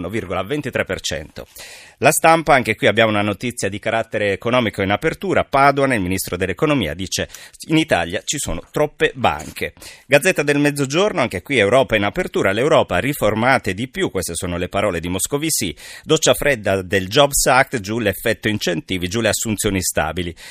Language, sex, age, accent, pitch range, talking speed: Italian, male, 30-49, native, 100-135 Hz, 155 wpm